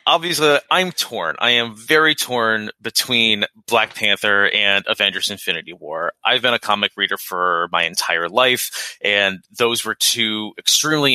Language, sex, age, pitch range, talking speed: English, male, 30-49, 100-130 Hz, 160 wpm